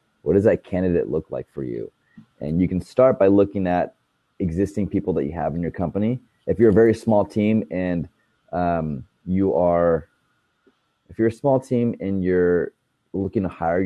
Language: English